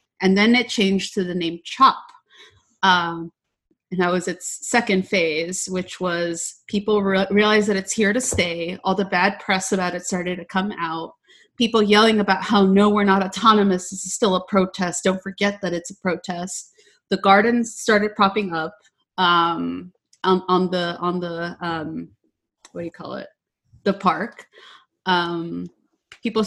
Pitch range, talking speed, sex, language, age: 175-210 Hz, 170 wpm, female, English, 30-49